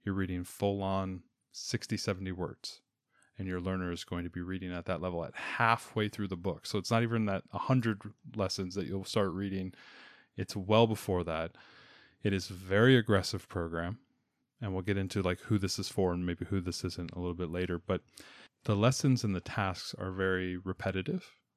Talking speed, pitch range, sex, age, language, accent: 195 wpm, 90-105 Hz, male, 20-39, English, American